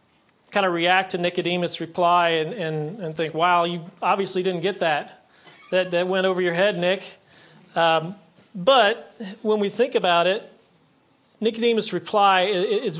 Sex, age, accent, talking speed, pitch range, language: male, 40-59, American, 150 wpm, 160-195 Hz, English